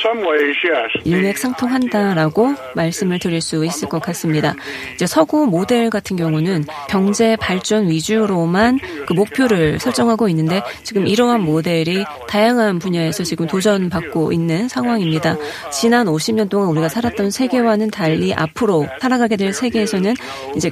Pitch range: 165-240 Hz